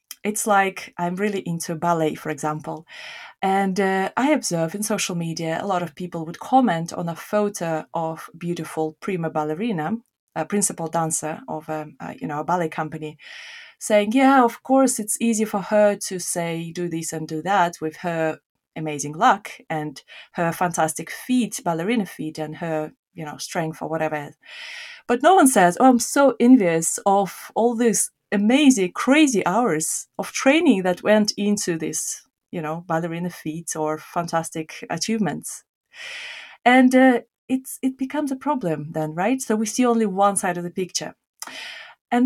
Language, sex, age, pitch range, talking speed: English, female, 30-49, 165-230 Hz, 165 wpm